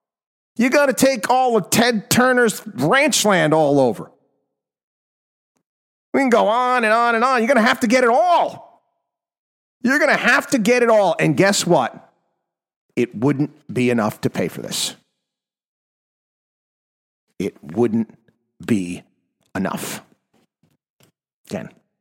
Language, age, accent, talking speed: English, 40-59, American, 140 wpm